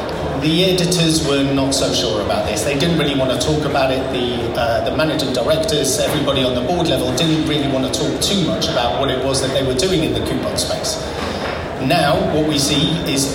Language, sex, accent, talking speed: English, male, British, 225 wpm